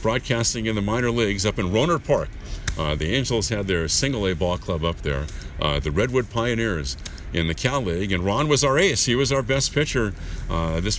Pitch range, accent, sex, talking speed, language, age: 85-115 Hz, American, male, 215 wpm, English, 50-69